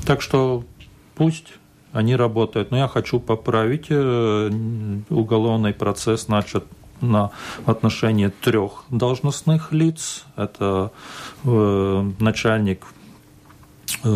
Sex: male